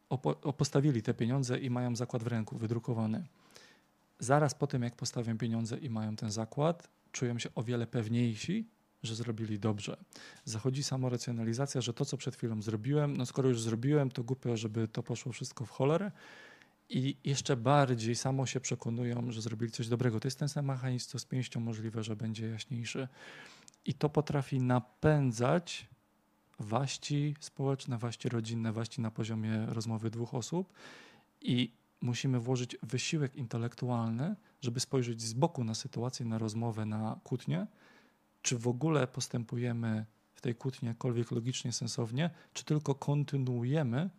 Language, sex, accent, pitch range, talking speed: Polish, male, native, 115-140 Hz, 150 wpm